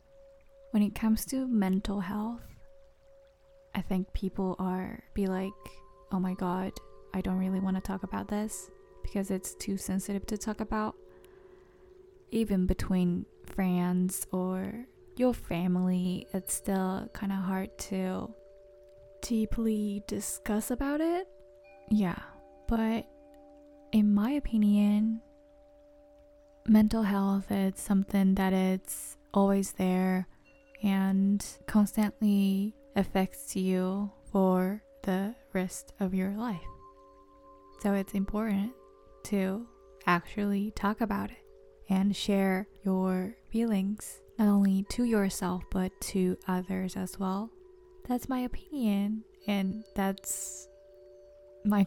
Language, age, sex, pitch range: Japanese, 20-39, female, 190-225 Hz